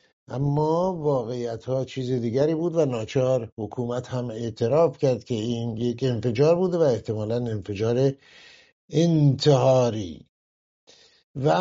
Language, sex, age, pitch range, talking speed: English, male, 60-79, 125-150 Hz, 115 wpm